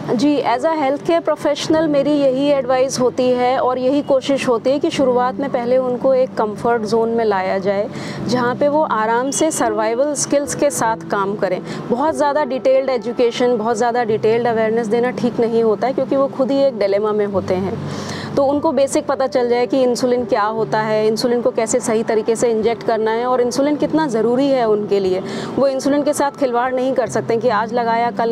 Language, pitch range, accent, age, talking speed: English, 220-270 Hz, Indian, 30-49, 210 wpm